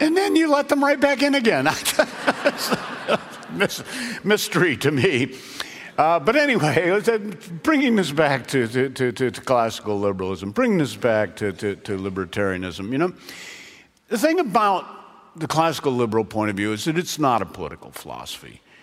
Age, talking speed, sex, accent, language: 50-69, 150 wpm, male, American, English